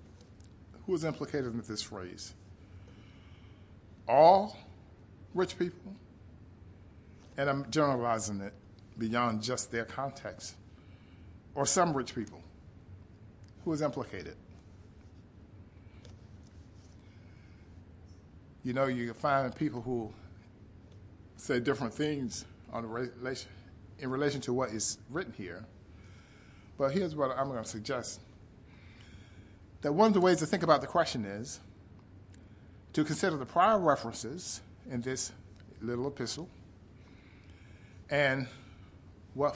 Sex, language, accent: male, English, American